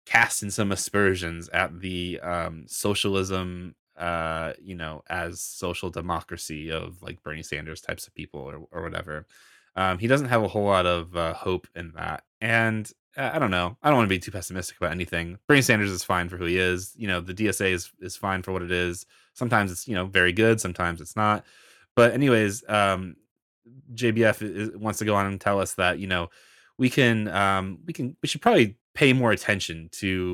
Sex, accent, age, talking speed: male, American, 20-39, 205 wpm